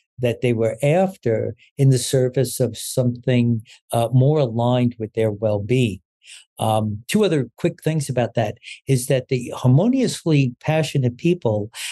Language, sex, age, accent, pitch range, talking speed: English, male, 60-79, American, 120-150 Hz, 140 wpm